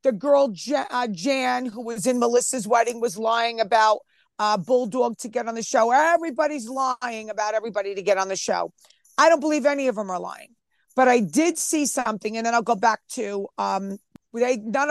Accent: American